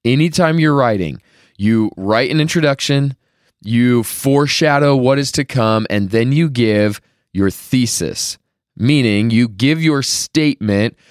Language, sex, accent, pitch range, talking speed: English, male, American, 105-140 Hz, 130 wpm